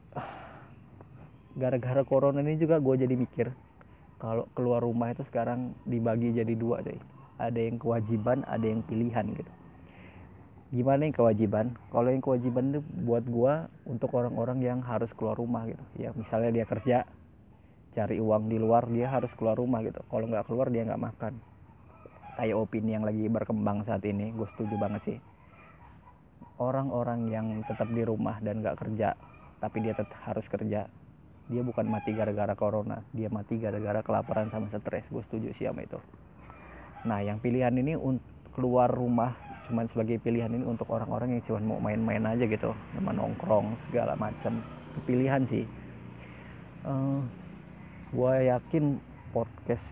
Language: Malay